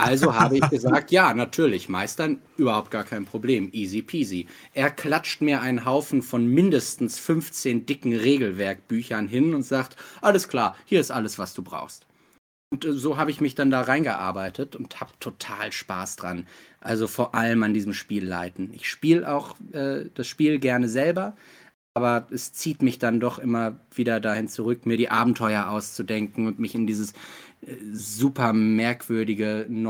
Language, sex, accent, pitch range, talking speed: German, male, German, 110-130 Hz, 160 wpm